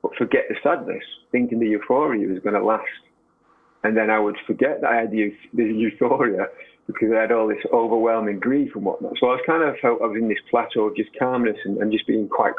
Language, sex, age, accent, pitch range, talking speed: English, male, 30-49, British, 105-120 Hz, 240 wpm